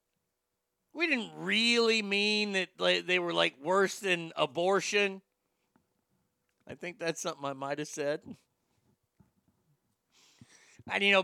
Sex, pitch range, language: male, 155-195 Hz, English